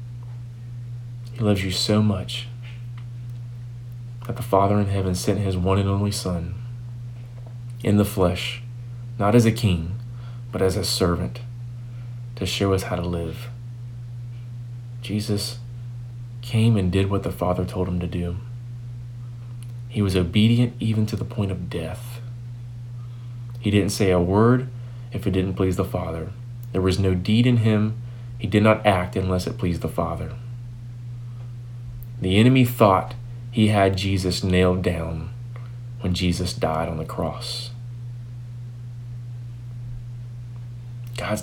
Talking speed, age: 135 wpm, 30-49